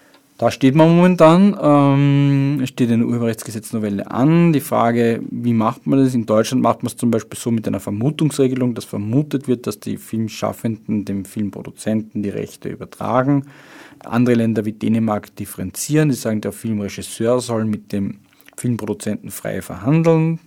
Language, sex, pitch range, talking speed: German, male, 110-125 Hz, 150 wpm